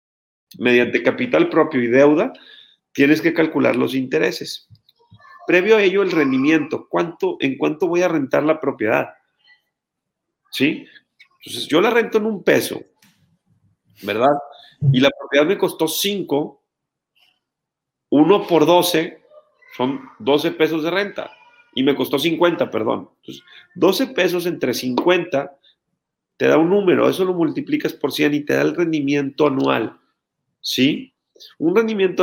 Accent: Mexican